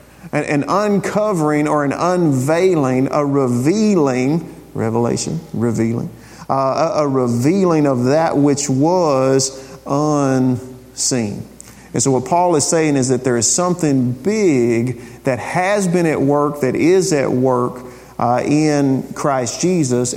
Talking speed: 130 wpm